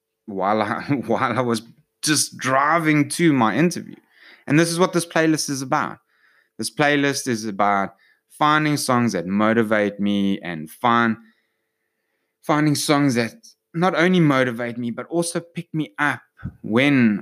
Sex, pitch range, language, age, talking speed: male, 100-125 Hz, English, 20-39, 145 wpm